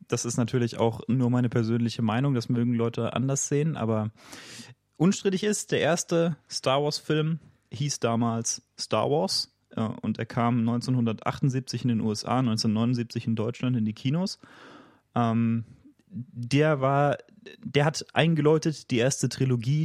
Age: 30-49